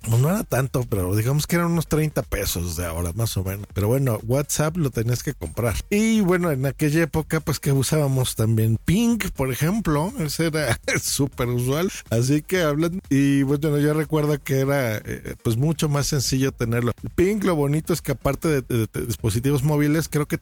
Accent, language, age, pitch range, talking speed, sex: Mexican, Spanish, 50-69, 120-160 Hz, 195 wpm, male